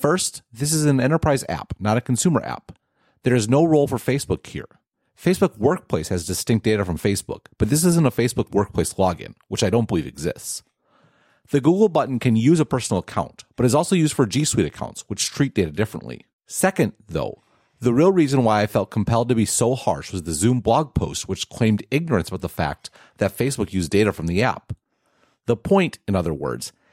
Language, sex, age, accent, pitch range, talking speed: English, male, 40-59, American, 100-140 Hz, 205 wpm